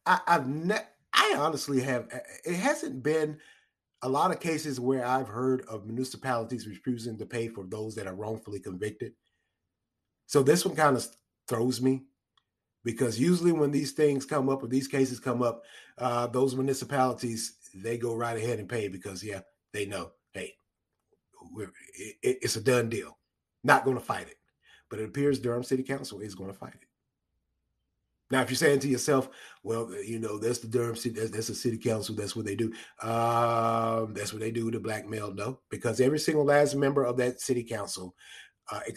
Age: 30-49